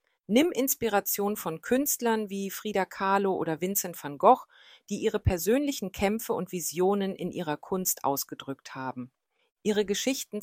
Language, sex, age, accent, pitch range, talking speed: German, female, 40-59, German, 155-210 Hz, 140 wpm